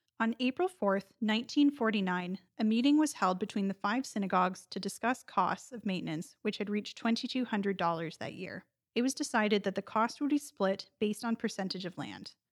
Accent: American